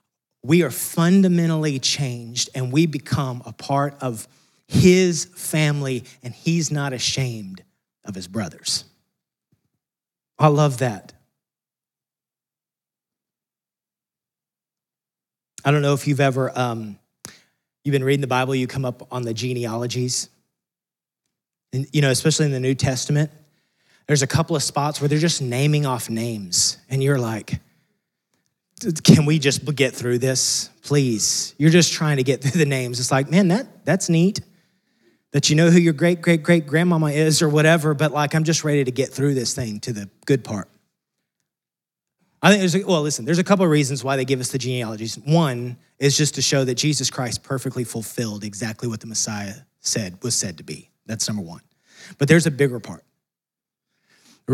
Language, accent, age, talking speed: English, American, 30-49, 170 wpm